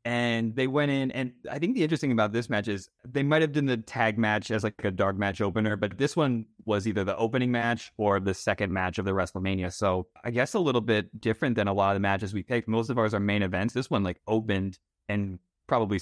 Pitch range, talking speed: 100-125 Hz, 255 wpm